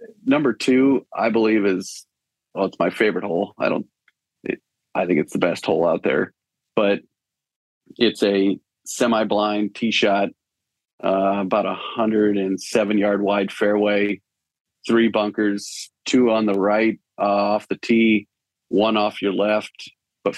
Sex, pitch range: male, 100-110 Hz